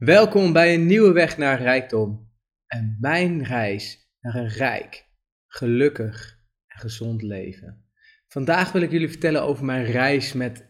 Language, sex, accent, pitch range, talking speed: Dutch, male, Dutch, 105-140 Hz, 145 wpm